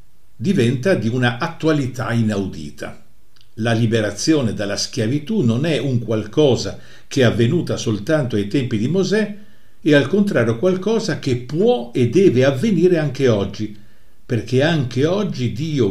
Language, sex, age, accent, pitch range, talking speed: Italian, male, 50-69, native, 115-150 Hz, 135 wpm